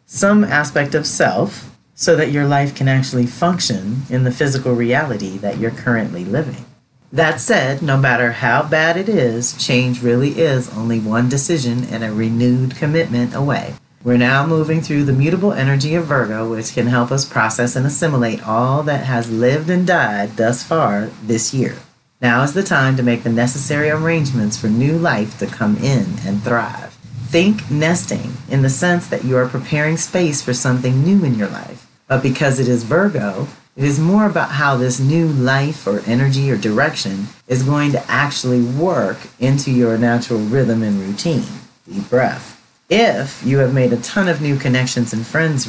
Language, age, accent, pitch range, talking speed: English, 40-59, American, 120-145 Hz, 180 wpm